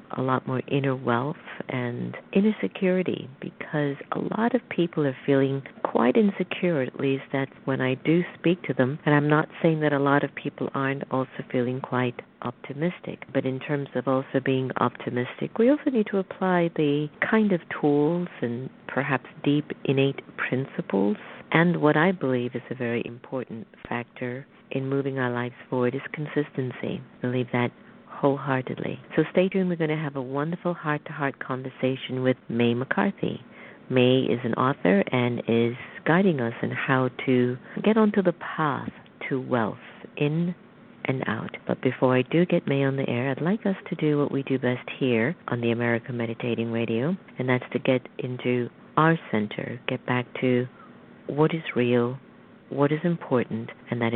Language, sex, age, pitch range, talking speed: English, female, 50-69, 125-165 Hz, 175 wpm